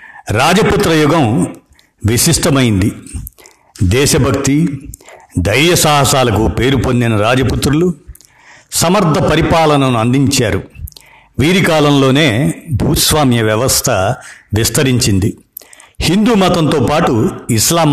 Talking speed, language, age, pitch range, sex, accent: 70 wpm, Telugu, 60-79, 115-150 Hz, male, native